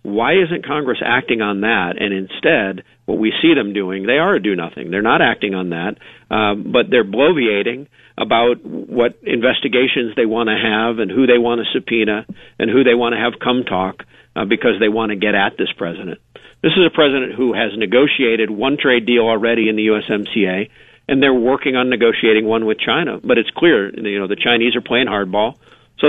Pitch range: 105-125 Hz